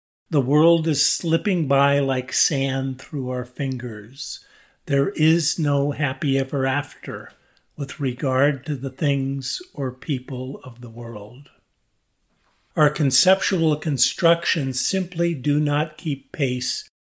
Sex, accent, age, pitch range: male, American, 50-69, 135-155 Hz